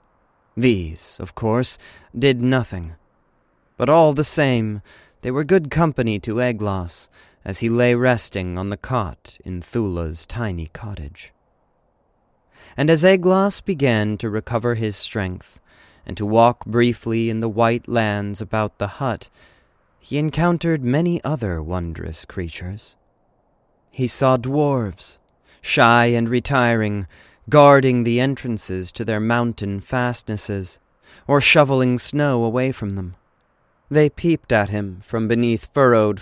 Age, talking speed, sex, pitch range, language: 30-49, 130 wpm, male, 100-130 Hz, English